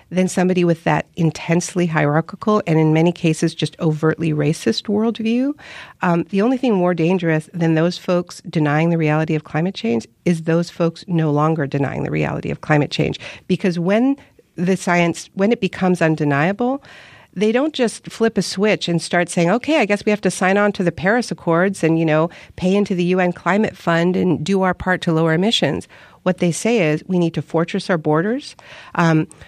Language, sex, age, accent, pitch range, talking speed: English, female, 50-69, American, 160-190 Hz, 195 wpm